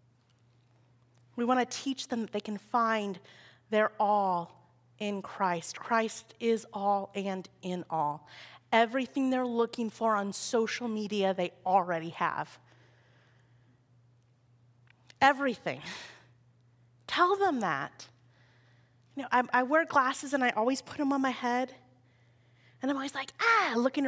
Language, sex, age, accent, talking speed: English, female, 30-49, American, 130 wpm